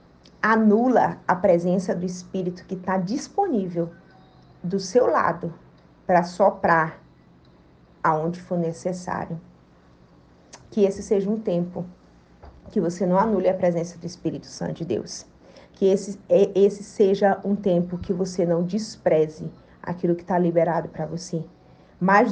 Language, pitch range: Portuguese, 175-220 Hz